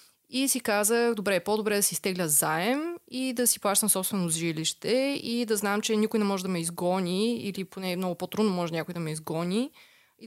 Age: 20-39